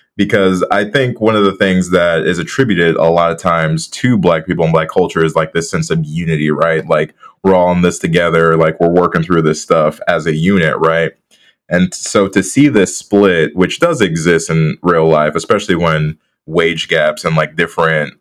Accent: American